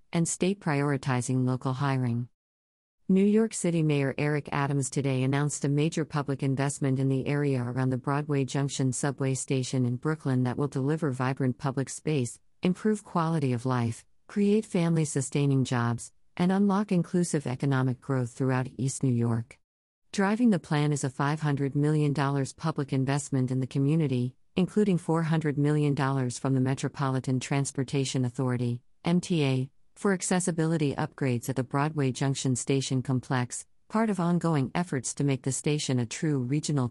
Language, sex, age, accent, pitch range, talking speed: English, female, 50-69, American, 130-155 Hz, 150 wpm